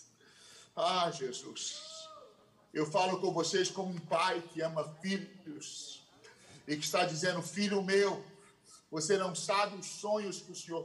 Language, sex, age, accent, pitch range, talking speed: Portuguese, male, 40-59, Brazilian, 155-195 Hz, 145 wpm